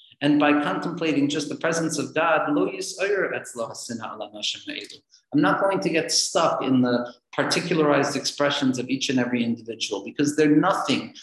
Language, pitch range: English, 130-170 Hz